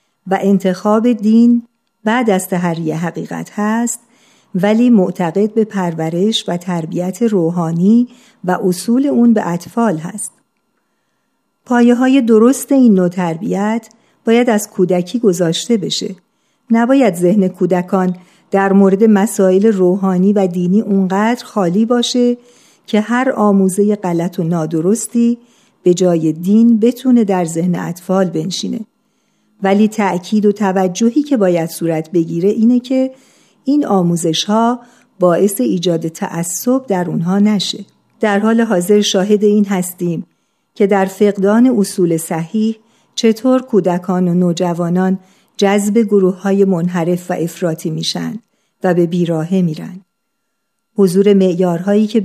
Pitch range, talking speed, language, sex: 180-230 Hz, 120 wpm, Persian, female